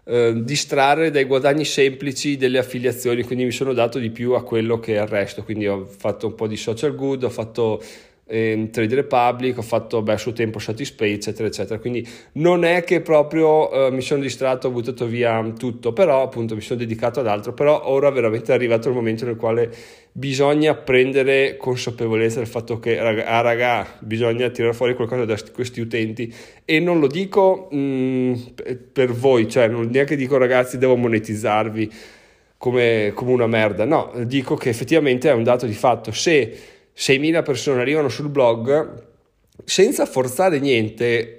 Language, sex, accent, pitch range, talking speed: Italian, male, native, 115-145 Hz, 170 wpm